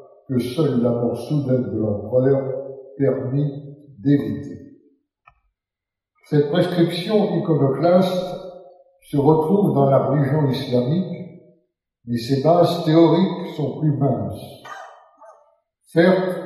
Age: 60-79